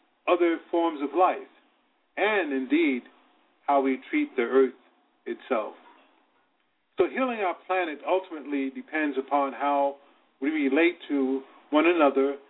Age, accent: 50-69, American